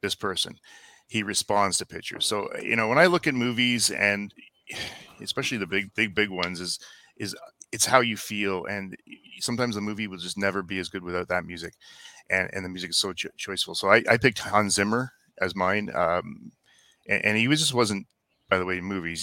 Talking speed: 210 wpm